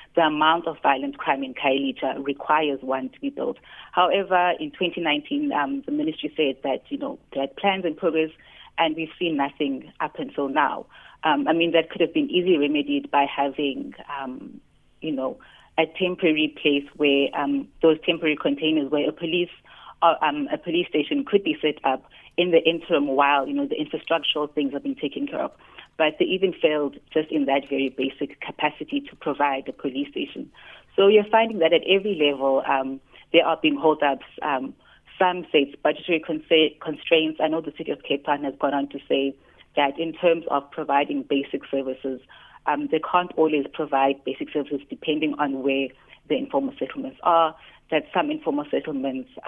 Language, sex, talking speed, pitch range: English, female, 185 wpm, 140-175 Hz